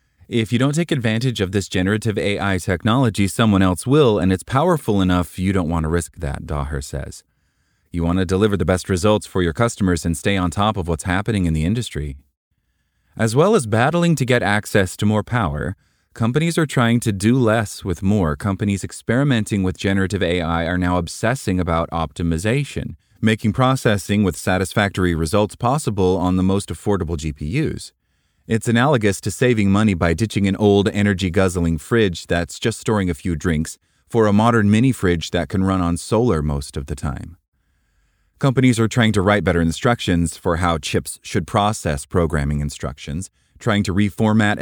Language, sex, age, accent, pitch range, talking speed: English, male, 30-49, American, 85-110 Hz, 175 wpm